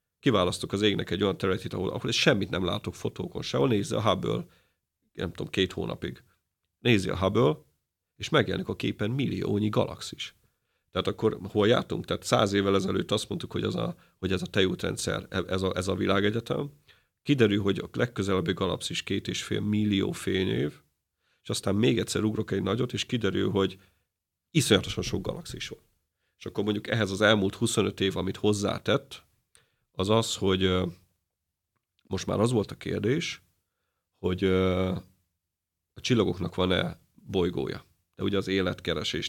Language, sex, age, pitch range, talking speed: Hungarian, male, 40-59, 90-105 Hz, 155 wpm